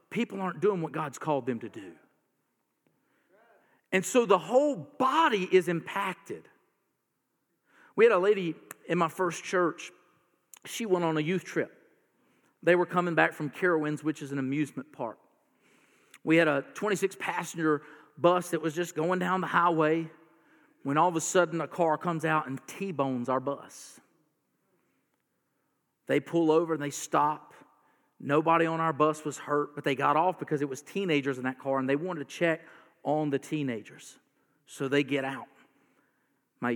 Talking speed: 165 wpm